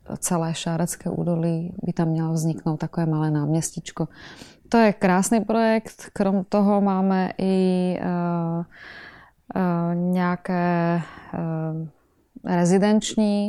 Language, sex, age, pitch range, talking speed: Czech, female, 20-39, 165-185 Hz, 90 wpm